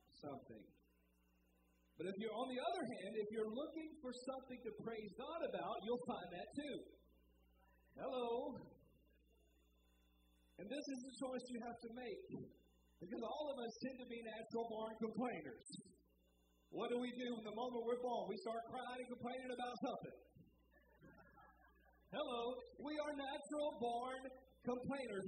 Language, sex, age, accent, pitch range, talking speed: English, male, 50-69, American, 205-265 Hz, 150 wpm